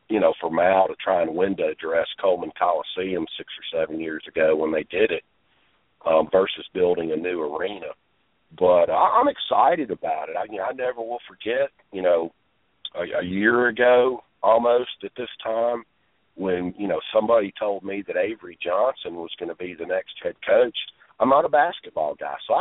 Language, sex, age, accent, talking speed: English, male, 50-69, American, 195 wpm